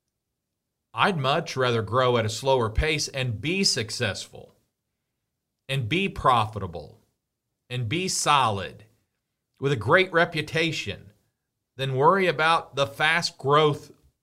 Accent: American